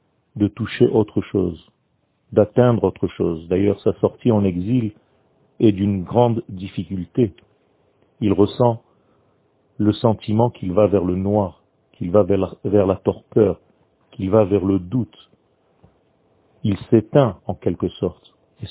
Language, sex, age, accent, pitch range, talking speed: French, male, 40-59, French, 100-125 Hz, 130 wpm